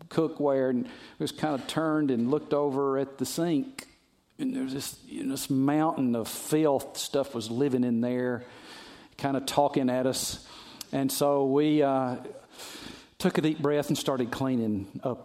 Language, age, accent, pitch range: English, 50-69, American, 120-155 Hz